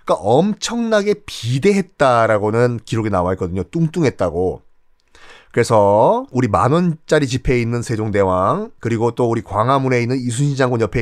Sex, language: male, Korean